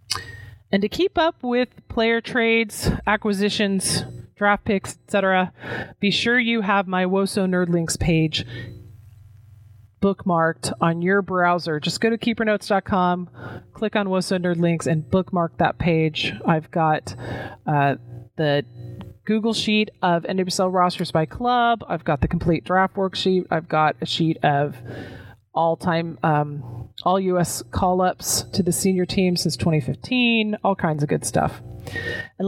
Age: 30-49